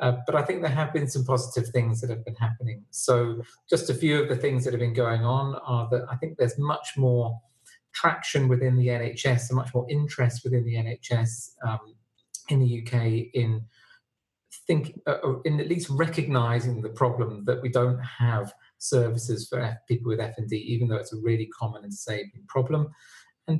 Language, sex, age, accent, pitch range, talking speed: English, male, 40-59, British, 115-130 Hz, 195 wpm